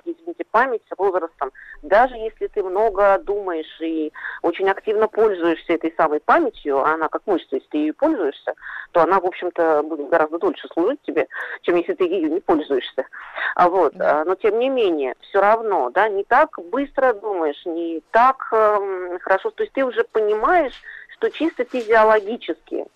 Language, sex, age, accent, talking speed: Russian, female, 40-59, native, 165 wpm